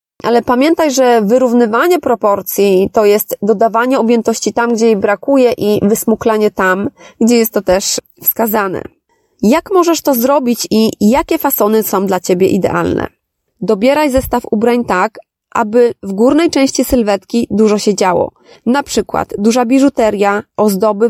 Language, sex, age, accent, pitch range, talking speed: Polish, female, 30-49, native, 210-270 Hz, 140 wpm